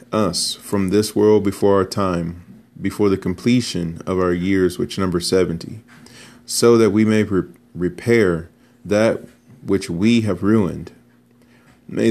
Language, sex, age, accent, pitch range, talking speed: English, male, 30-49, American, 95-110 Hz, 140 wpm